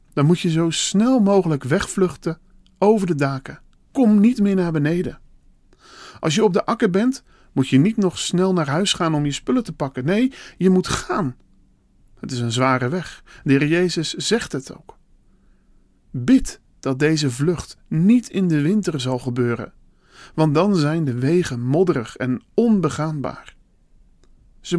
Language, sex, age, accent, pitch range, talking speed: Dutch, male, 40-59, Dutch, 135-195 Hz, 165 wpm